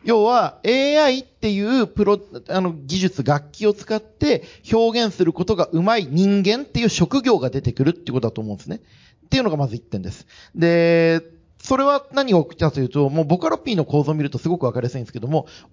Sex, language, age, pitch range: male, Japanese, 40-59, 140-205 Hz